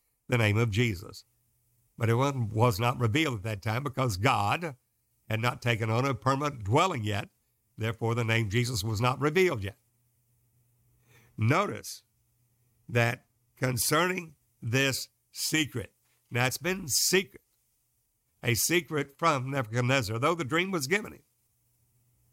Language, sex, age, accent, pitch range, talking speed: English, male, 60-79, American, 115-145 Hz, 130 wpm